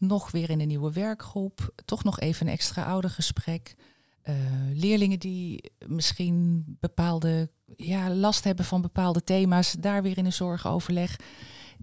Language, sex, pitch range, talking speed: Dutch, female, 145-190 Hz, 145 wpm